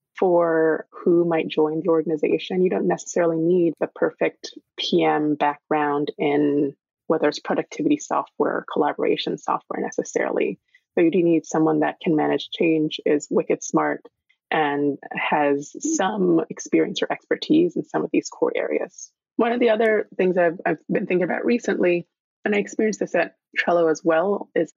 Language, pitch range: English, 155-180 Hz